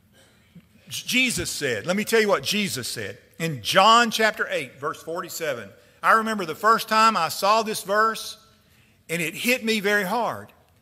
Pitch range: 130-220 Hz